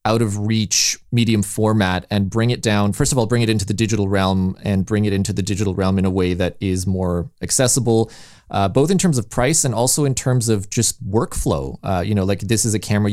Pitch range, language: 95-115 Hz, English